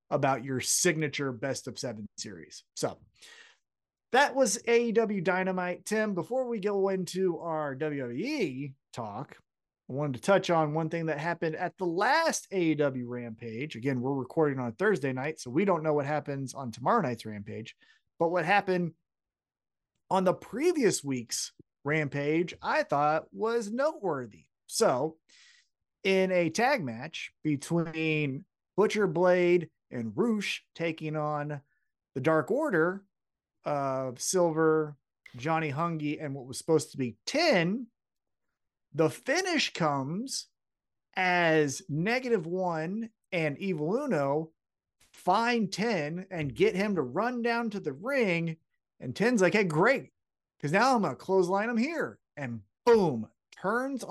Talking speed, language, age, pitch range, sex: 140 wpm, English, 30-49, 145-205 Hz, male